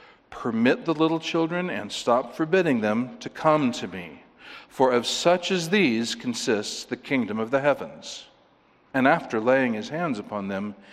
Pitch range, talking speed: 135-170 Hz, 165 wpm